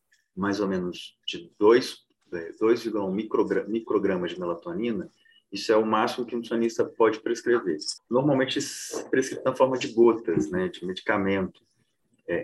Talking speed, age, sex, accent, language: 135 wpm, 30-49, male, Brazilian, Portuguese